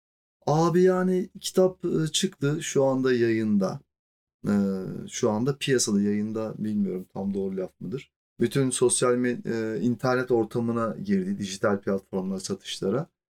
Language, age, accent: Turkish, 30-49, native